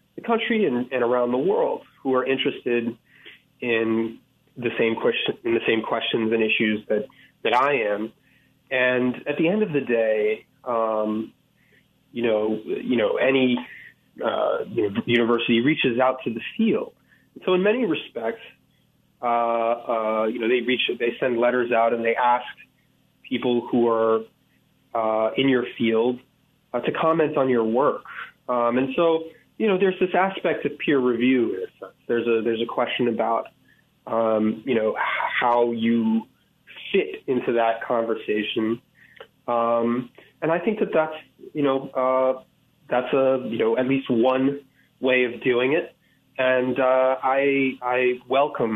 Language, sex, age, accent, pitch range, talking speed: English, male, 30-49, American, 115-140 Hz, 155 wpm